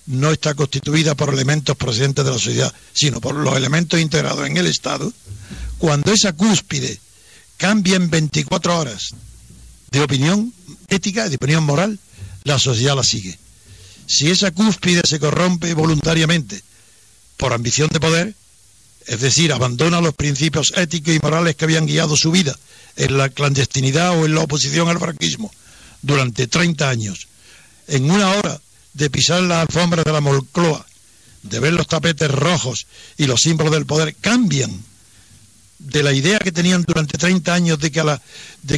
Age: 60-79